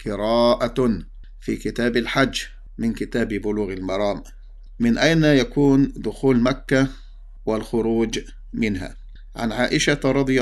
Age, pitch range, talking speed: 50-69, 110-130 Hz, 100 wpm